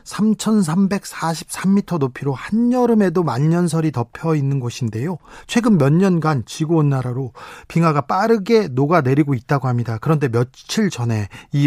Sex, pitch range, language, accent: male, 135-180 Hz, Korean, native